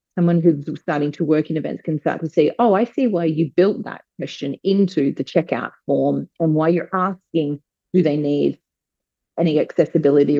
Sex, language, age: female, English, 30-49